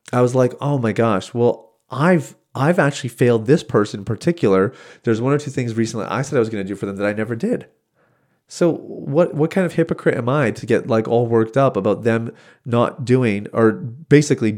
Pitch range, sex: 110-135 Hz, male